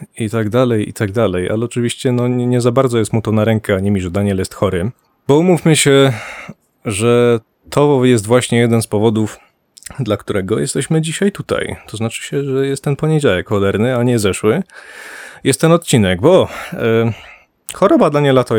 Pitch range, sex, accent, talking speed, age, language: 110-145 Hz, male, native, 195 wpm, 30-49, Polish